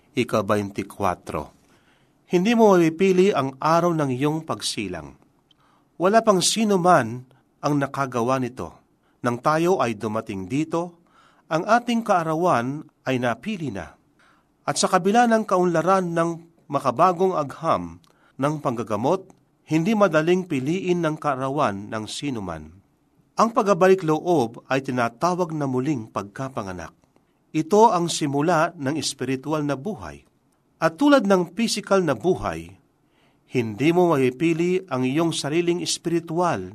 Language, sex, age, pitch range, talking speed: Filipino, male, 40-59, 125-175 Hz, 120 wpm